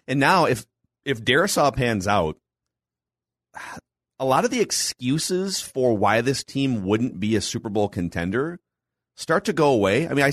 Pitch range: 95-120 Hz